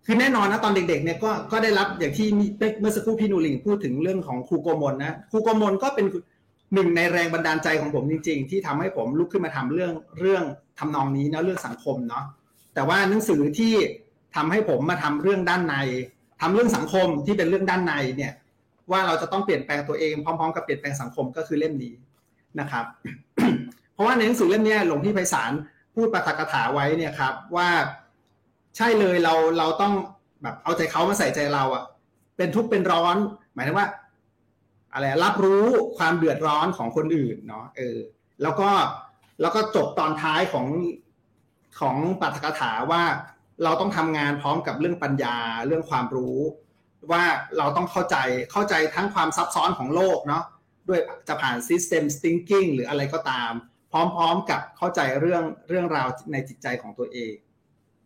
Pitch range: 140-195 Hz